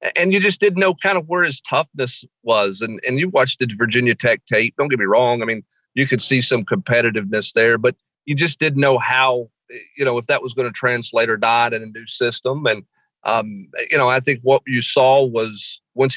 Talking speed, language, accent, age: 230 wpm, English, American, 40-59